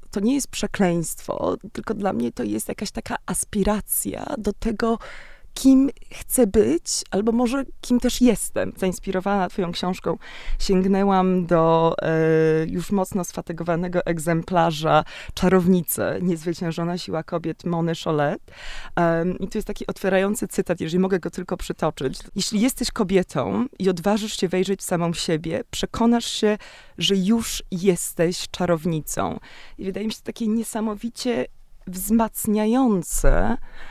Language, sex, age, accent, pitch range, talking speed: Polish, female, 20-39, native, 170-215 Hz, 130 wpm